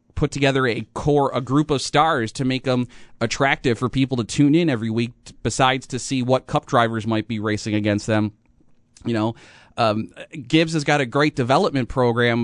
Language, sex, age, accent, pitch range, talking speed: English, male, 30-49, American, 115-145 Hz, 200 wpm